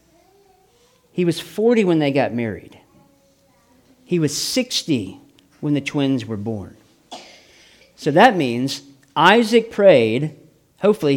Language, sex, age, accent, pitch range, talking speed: English, male, 40-59, American, 145-215 Hz, 115 wpm